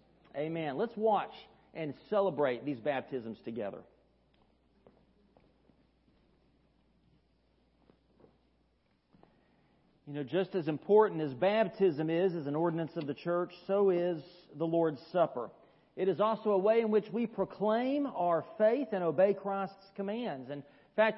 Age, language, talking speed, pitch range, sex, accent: 40-59, English, 130 wpm, 175-225 Hz, male, American